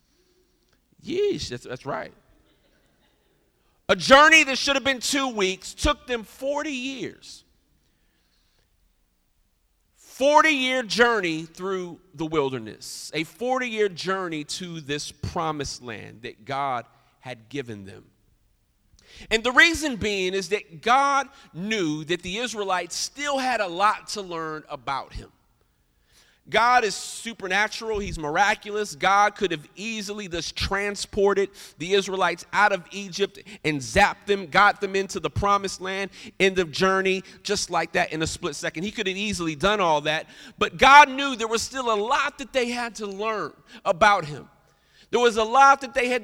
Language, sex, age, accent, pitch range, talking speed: English, male, 40-59, American, 180-245 Hz, 150 wpm